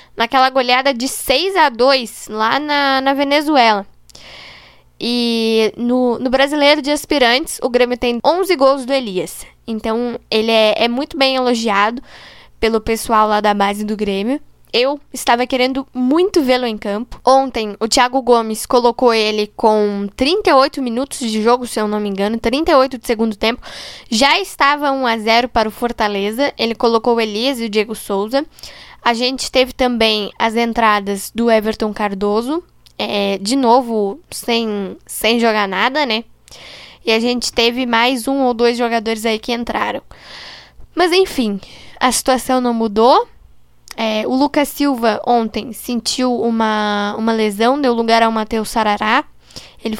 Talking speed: 150 wpm